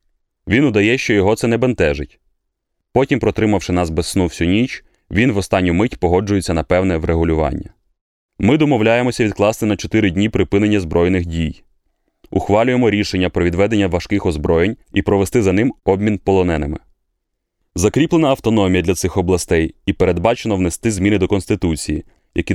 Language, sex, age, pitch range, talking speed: Ukrainian, male, 20-39, 90-105 Hz, 145 wpm